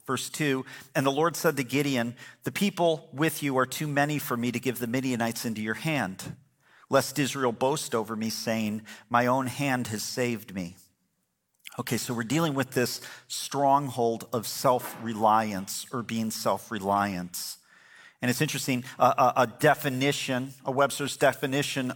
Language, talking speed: English, 160 wpm